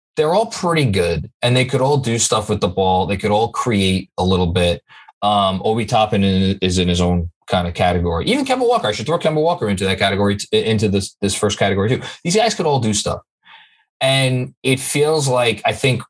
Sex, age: male, 20-39